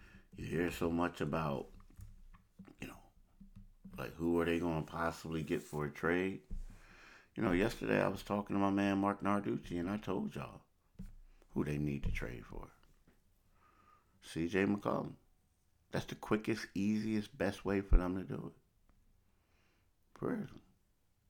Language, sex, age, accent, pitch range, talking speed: English, male, 60-79, American, 70-100 Hz, 150 wpm